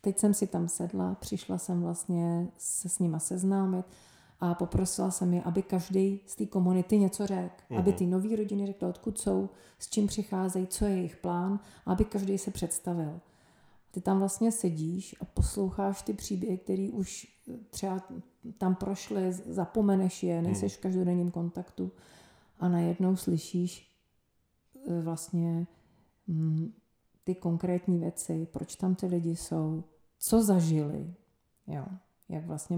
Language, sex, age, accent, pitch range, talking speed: Czech, female, 40-59, native, 155-185 Hz, 140 wpm